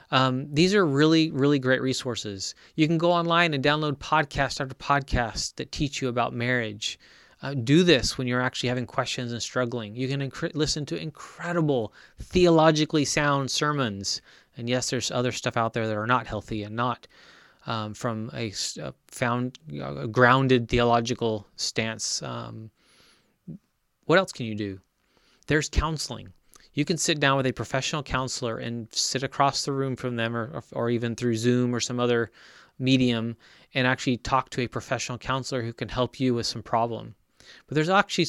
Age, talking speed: 20-39, 175 wpm